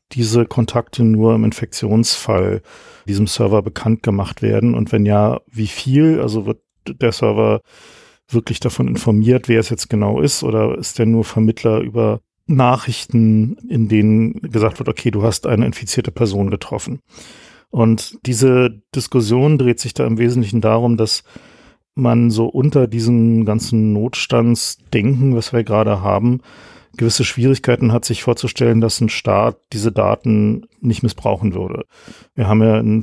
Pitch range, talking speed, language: 110-120 Hz, 150 wpm, German